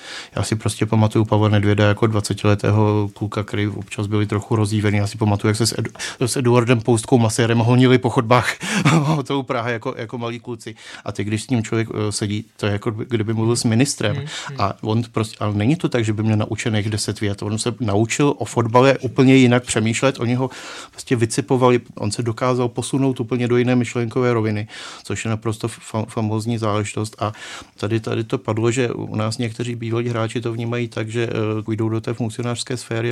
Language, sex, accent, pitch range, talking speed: Czech, male, native, 105-120 Hz, 195 wpm